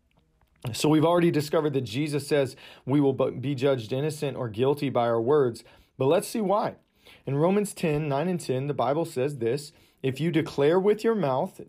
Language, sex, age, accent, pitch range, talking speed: English, male, 40-59, American, 120-155 Hz, 190 wpm